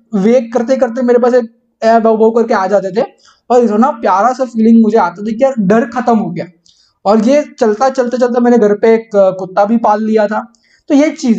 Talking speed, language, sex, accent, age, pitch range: 215 wpm, Hindi, male, native, 20-39, 205-255 Hz